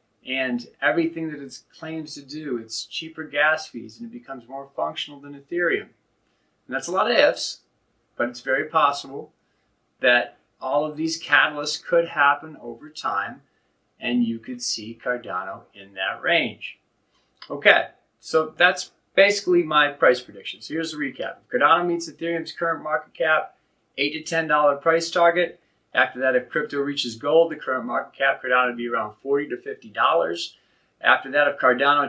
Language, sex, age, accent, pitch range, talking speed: English, male, 40-59, American, 125-165 Hz, 165 wpm